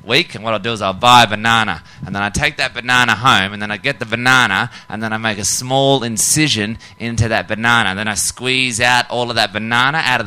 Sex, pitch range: male, 120-165 Hz